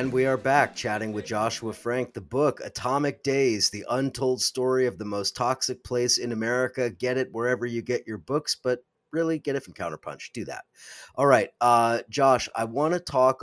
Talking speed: 200 wpm